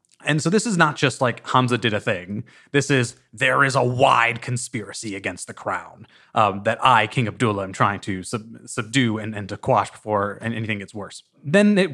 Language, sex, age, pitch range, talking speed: English, male, 30-49, 115-145 Hz, 205 wpm